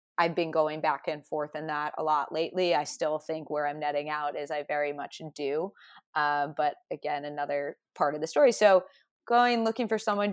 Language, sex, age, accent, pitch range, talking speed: English, female, 20-39, American, 155-190 Hz, 210 wpm